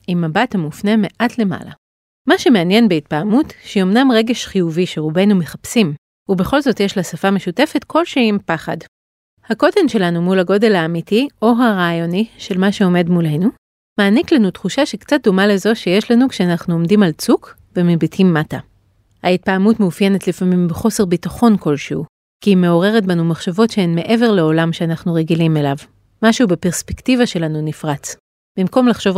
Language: Hebrew